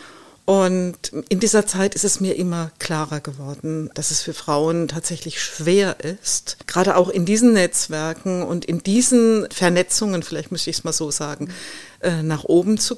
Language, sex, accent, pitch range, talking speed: German, female, German, 160-205 Hz, 165 wpm